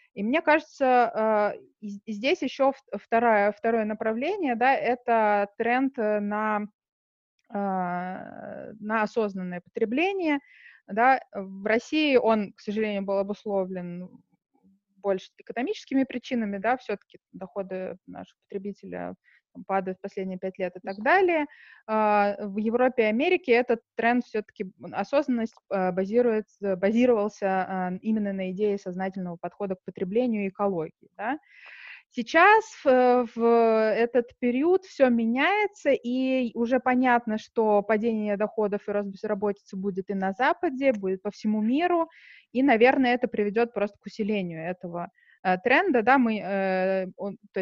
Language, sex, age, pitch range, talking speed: Russian, female, 20-39, 195-245 Hz, 115 wpm